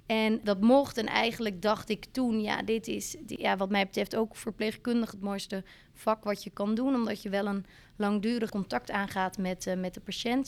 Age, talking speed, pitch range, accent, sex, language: 20-39, 205 wpm, 195-225 Hz, Dutch, female, Dutch